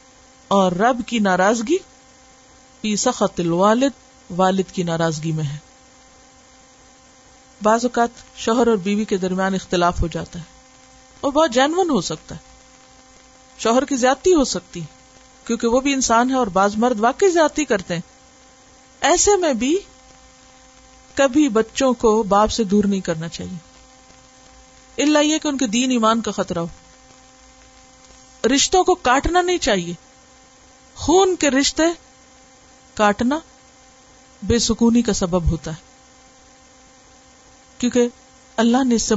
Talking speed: 140 wpm